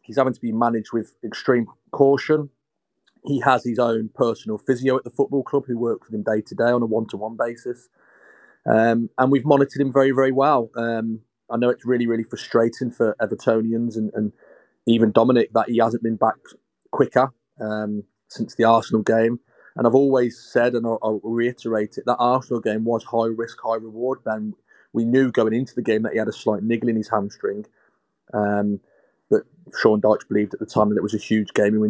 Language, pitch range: English, 110-125 Hz